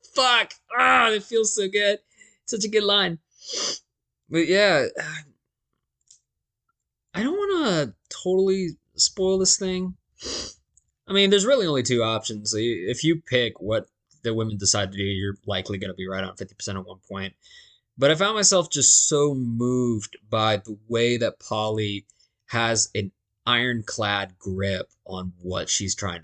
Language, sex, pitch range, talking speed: English, male, 100-130 Hz, 155 wpm